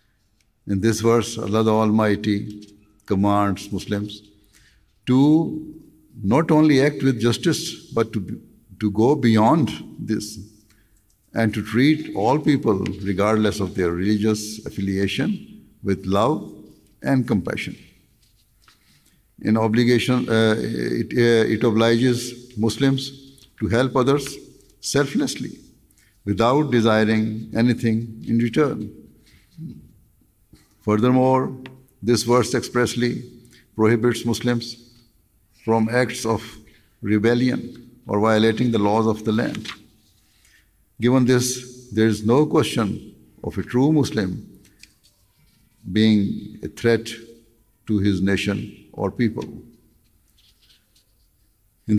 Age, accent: 60-79, Indian